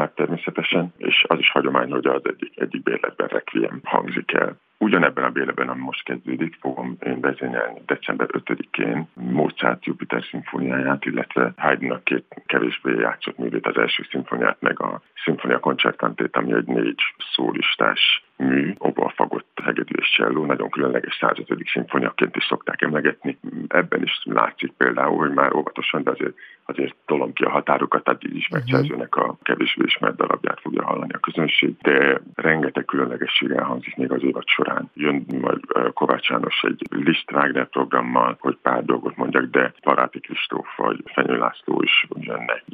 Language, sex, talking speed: Hungarian, male, 150 wpm